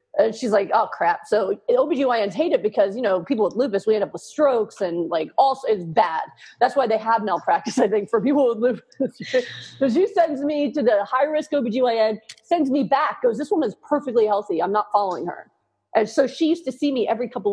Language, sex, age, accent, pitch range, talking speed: English, female, 30-49, American, 215-275 Hz, 225 wpm